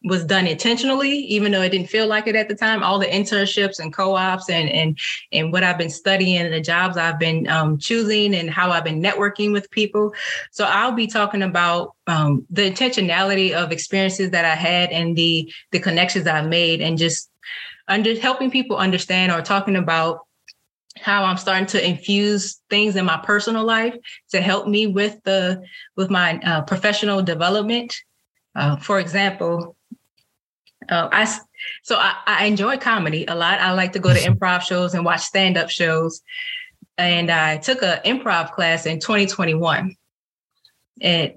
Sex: female